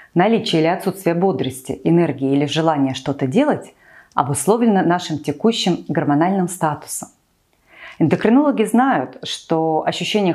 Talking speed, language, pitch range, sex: 105 wpm, Russian, 155-220 Hz, female